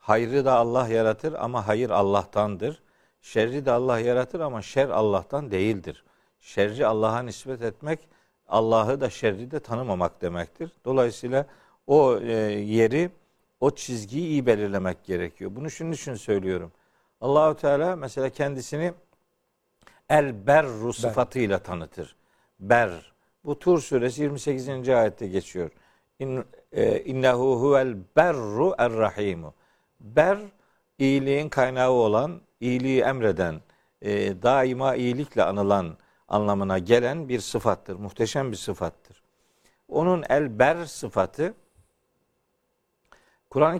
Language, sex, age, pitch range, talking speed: Turkish, male, 50-69, 105-145 Hz, 110 wpm